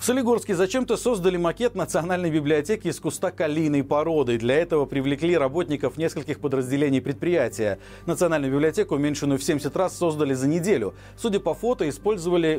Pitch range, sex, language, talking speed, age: 140-185 Hz, male, Russian, 150 wpm, 40-59